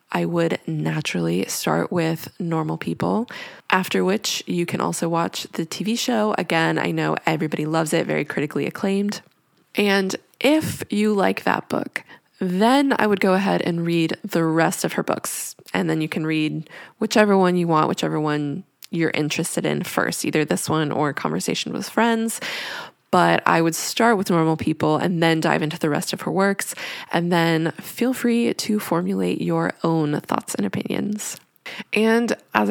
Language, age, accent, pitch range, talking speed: English, 20-39, American, 165-220 Hz, 170 wpm